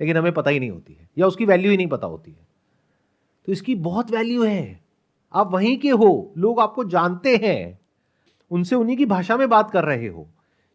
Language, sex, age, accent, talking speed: Hindi, male, 40-59, native, 205 wpm